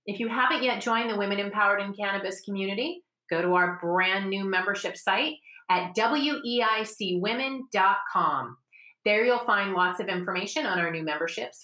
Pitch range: 180-235 Hz